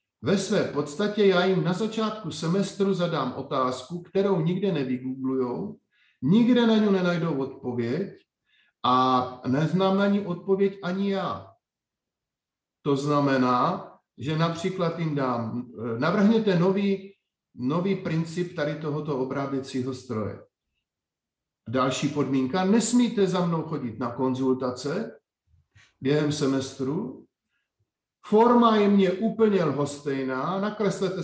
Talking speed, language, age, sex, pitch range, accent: 105 wpm, Czech, 50-69, male, 135-195 Hz, native